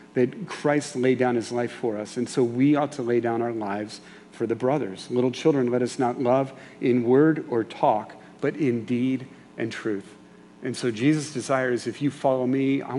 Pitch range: 120-140 Hz